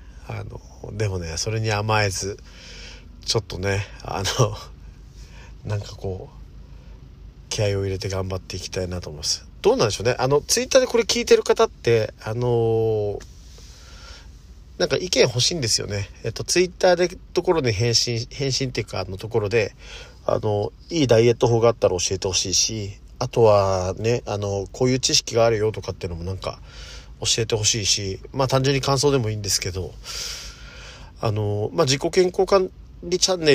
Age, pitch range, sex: 40-59, 95-135 Hz, male